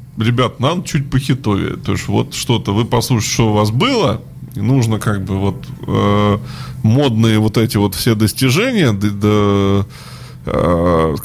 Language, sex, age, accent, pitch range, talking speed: Russian, male, 20-39, native, 105-130 Hz, 155 wpm